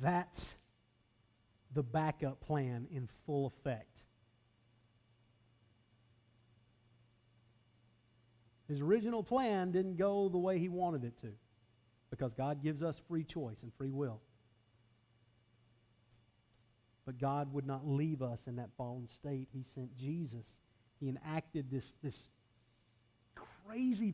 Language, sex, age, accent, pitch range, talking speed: English, male, 50-69, American, 115-155 Hz, 110 wpm